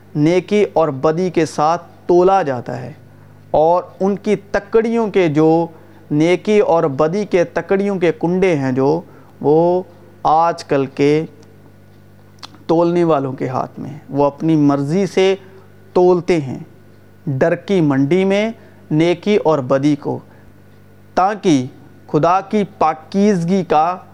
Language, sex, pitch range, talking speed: Urdu, male, 135-190 Hz, 125 wpm